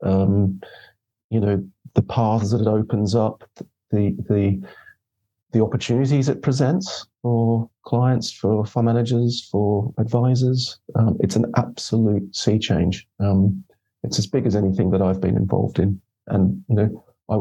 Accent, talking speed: British, 150 wpm